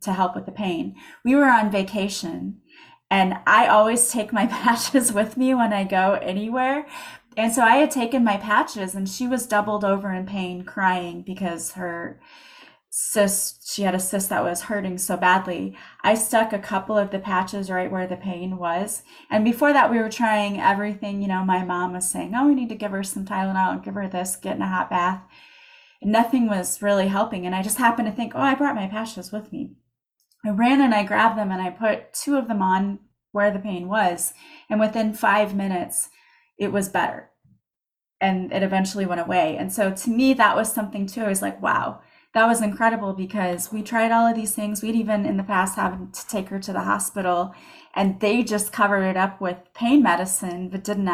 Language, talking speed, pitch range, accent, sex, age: English, 210 wpm, 185-225 Hz, American, female, 30-49